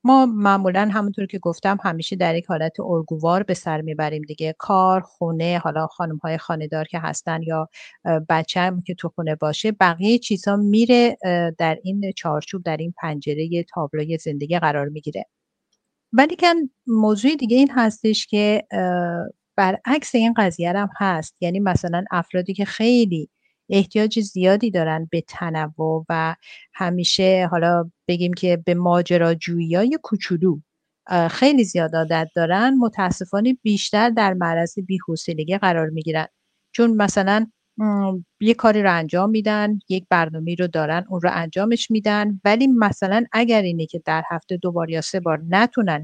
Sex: female